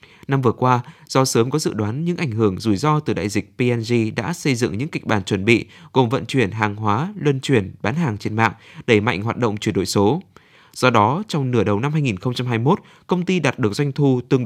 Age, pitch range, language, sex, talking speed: 20-39, 110-150 Hz, Vietnamese, male, 235 wpm